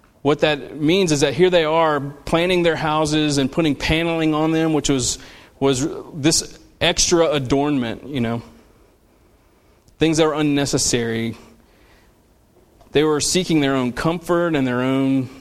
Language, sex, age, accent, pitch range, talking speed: English, male, 30-49, American, 120-150 Hz, 145 wpm